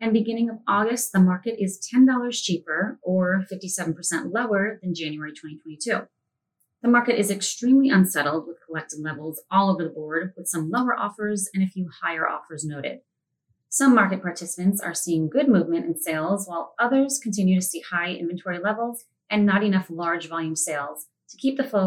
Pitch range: 165-215 Hz